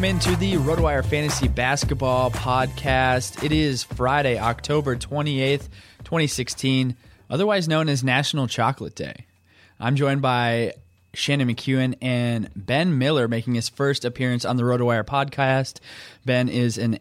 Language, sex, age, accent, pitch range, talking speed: English, male, 20-39, American, 115-140 Hz, 135 wpm